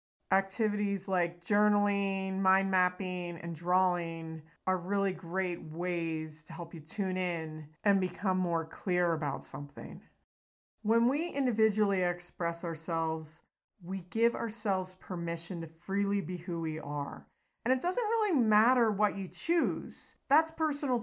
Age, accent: 40-59, American